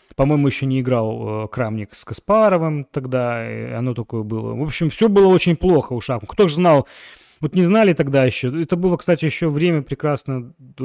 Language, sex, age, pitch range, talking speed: Russian, male, 30-49, 120-165 Hz, 195 wpm